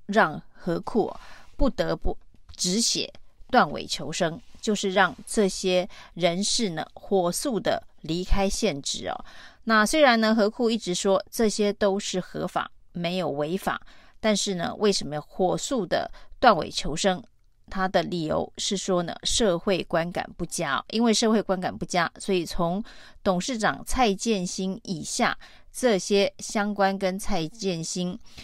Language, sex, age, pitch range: Chinese, female, 30-49, 180-220 Hz